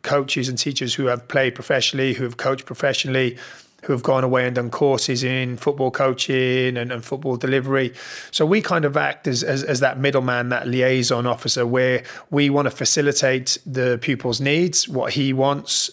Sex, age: male, 30-49